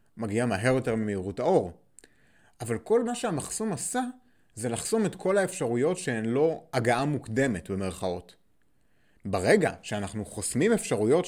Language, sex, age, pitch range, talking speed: Hebrew, male, 30-49, 110-165 Hz, 130 wpm